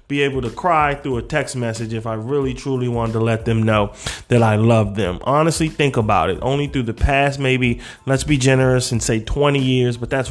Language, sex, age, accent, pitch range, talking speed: English, male, 30-49, American, 115-135 Hz, 225 wpm